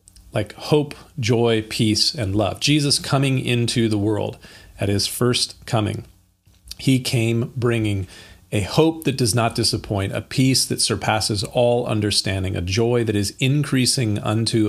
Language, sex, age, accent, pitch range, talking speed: English, male, 40-59, American, 100-120 Hz, 145 wpm